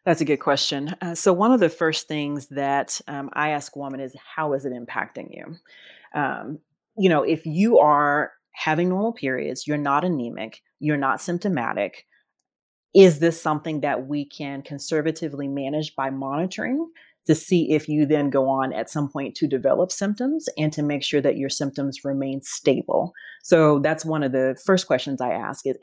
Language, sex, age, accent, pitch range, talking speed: English, female, 30-49, American, 135-165 Hz, 185 wpm